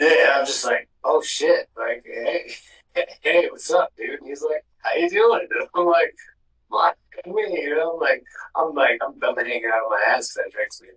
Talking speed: 220 wpm